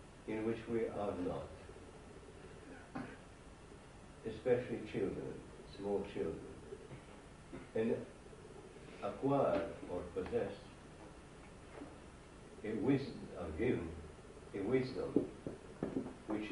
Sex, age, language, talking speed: male, 60-79, English, 75 wpm